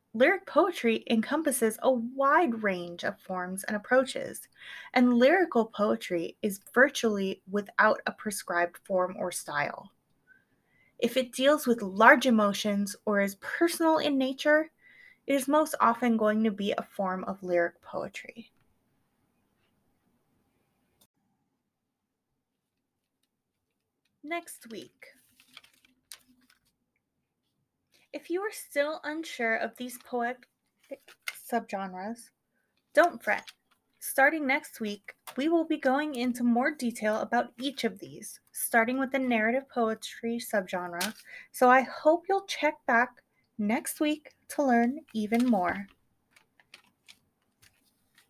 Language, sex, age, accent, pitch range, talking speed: English, female, 20-39, American, 215-290 Hz, 110 wpm